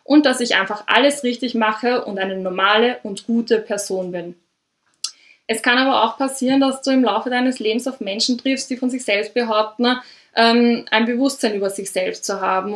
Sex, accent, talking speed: female, German, 195 wpm